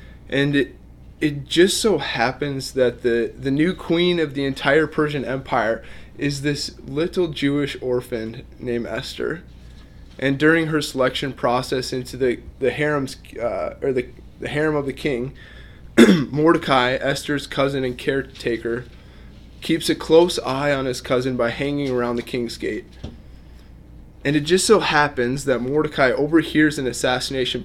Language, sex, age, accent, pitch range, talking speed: English, male, 20-39, American, 125-150 Hz, 140 wpm